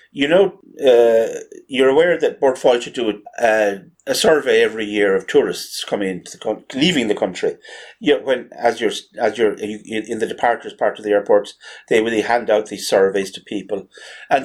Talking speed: 190 wpm